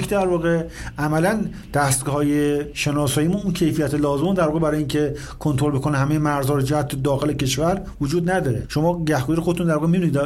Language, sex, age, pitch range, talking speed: Persian, male, 50-69, 145-175 Hz, 160 wpm